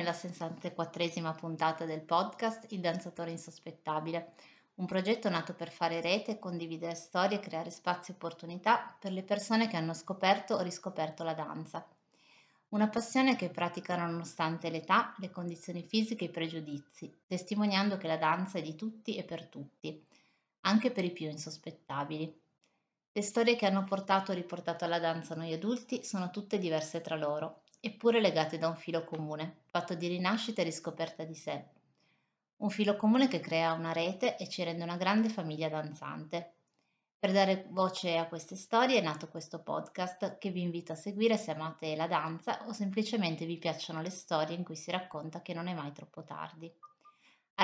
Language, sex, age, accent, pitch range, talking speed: Italian, female, 30-49, native, 165-200 Hz, 175 wpm